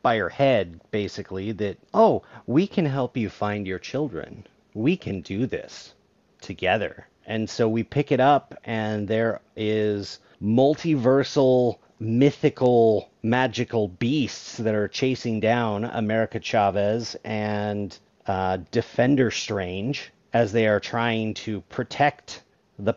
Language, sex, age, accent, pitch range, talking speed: English, male, 40-59, American, 105-140 Hz, 125 wpm